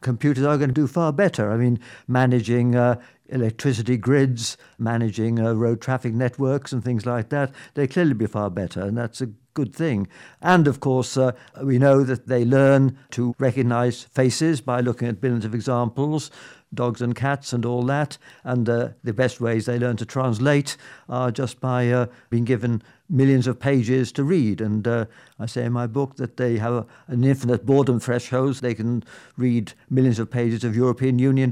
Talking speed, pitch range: 190 wpm, 120-135 Hz